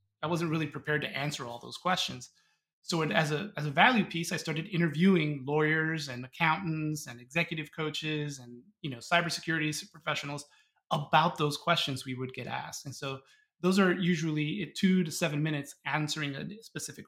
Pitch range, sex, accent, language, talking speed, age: 135-170 Hz, male, American, English, 170 wpm, 30-49